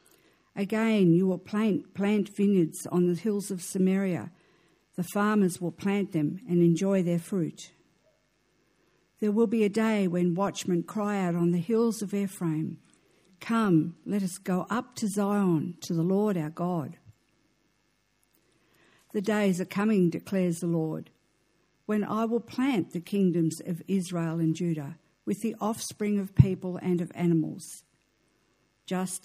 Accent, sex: Australian, female